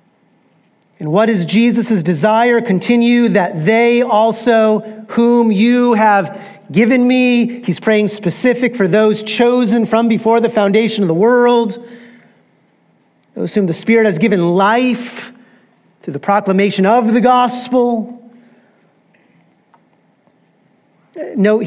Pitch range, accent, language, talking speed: 195-235 Hz, American, English, 115 wpm